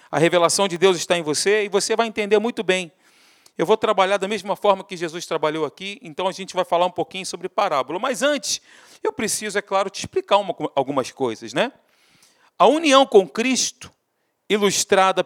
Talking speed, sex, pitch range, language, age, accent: 190 wpm, male, 185-240 Hz, Portuguese, 40-59, Brazilian